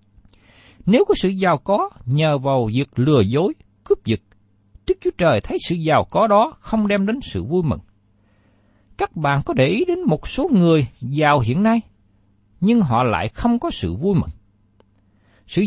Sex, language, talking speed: male, Vietnamese, 180 wpm